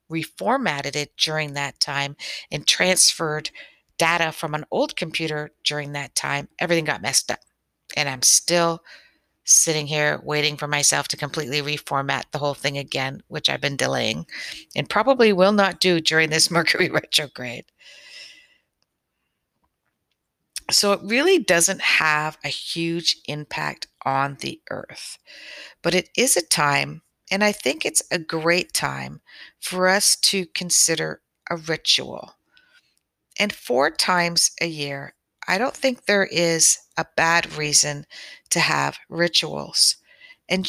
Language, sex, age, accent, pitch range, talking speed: English, female, 50-69, American, 150-190 Hz, 135 wpm